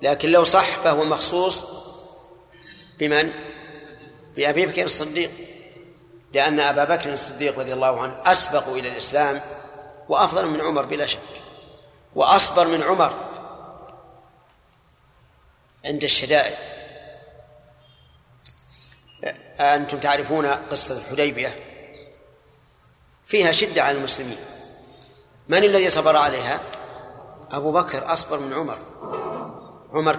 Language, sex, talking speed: Arabic, male, 95 wpm